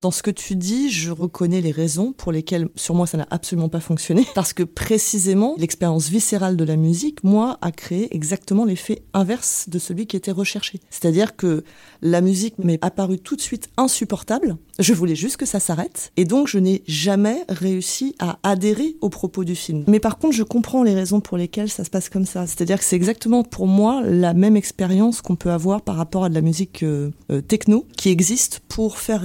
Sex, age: female, 30-49